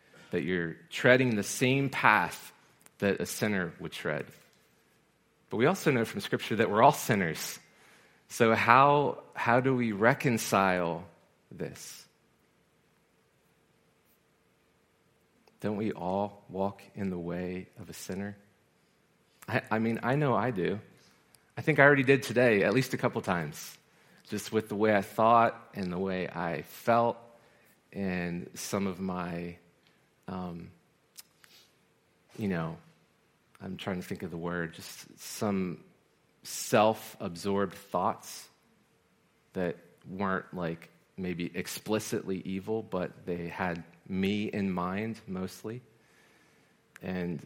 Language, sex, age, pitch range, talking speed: English, male, 40-59, 90-115 Hz, 125 wpm